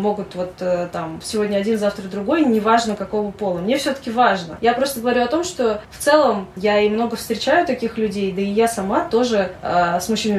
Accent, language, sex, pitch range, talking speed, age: native, Russian, female, 185-220 Hz, 200 wpm, 20-39